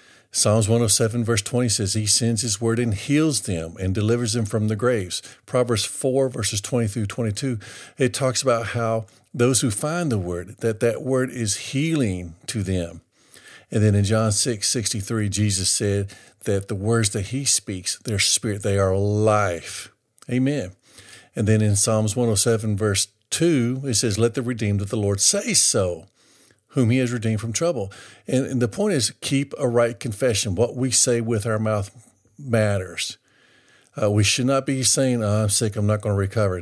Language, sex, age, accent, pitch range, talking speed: English, male, 50-69, American, 105-125 Hz, 185 wpm